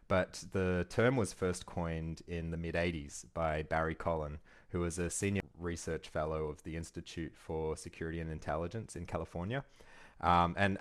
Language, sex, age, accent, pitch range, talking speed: English, male, 20-39, Australian, 80-90 Hz, 160 wpm